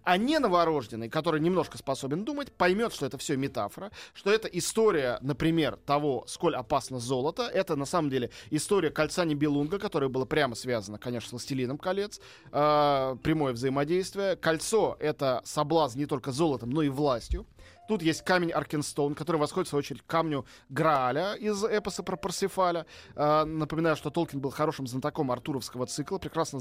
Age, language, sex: 20-39, Russian, male